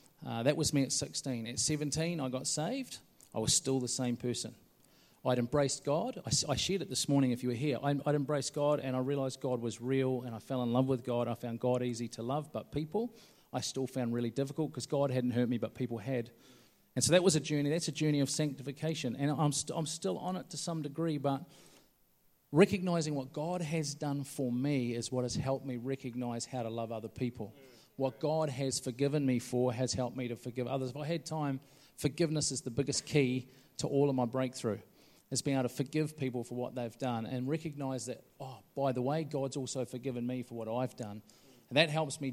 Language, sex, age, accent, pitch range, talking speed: English, male, 40-59, Australian, 125-150 Hz, 230 wpm